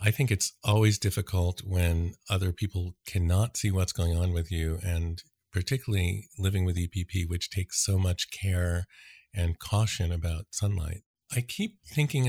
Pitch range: 90-110 Hz